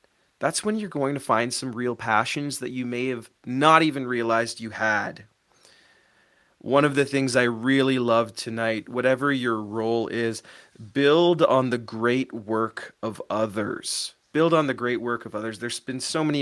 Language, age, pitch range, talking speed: English, 30-49, 120-160 Hz, 175 wpm